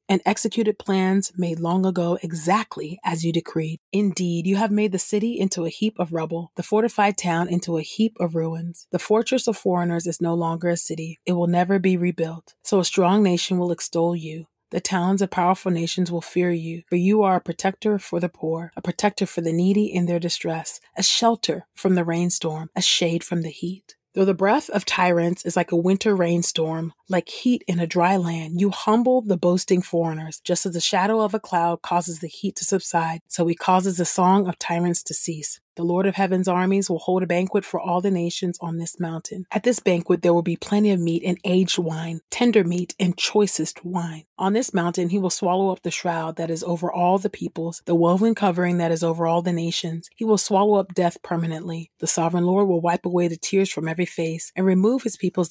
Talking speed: 220 wpm